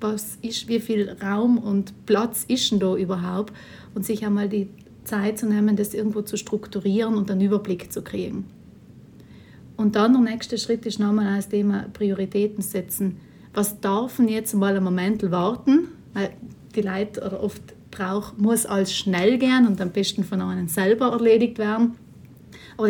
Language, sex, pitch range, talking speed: German, female, 200-230 Hz, 165 wpm